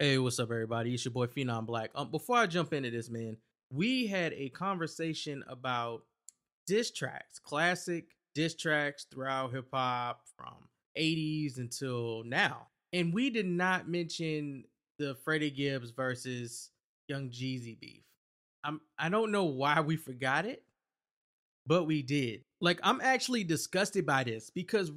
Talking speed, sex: 150 wpm, male